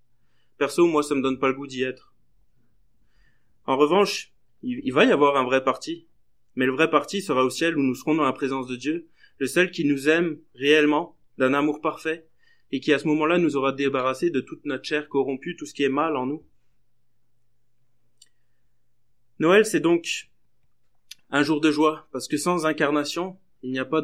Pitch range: 130-160 Hz